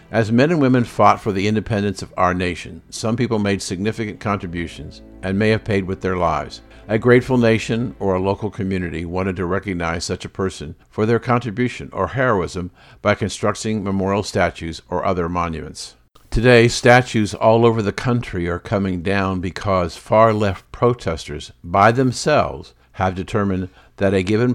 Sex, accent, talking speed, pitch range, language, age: male, American, 165 wpm, 90-110 Hz, English, 50-69